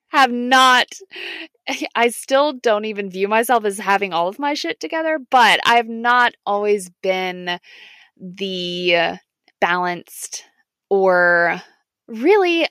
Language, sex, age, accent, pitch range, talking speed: English, female, 20-39, American, 190-270 Hz, 115 wpm